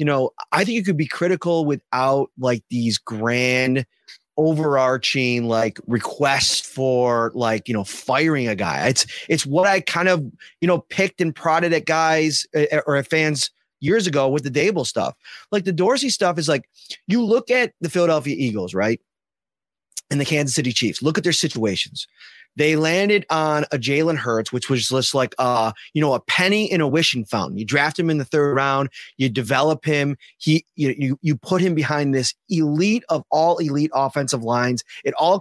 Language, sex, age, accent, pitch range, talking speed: English, male, 30-49, American, 130-180 Hz, 190 wpm